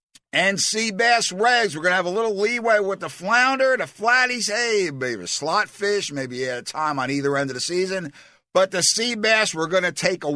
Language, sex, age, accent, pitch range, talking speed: English, male, 50-69, American, 140-210 Hz, 220 wpm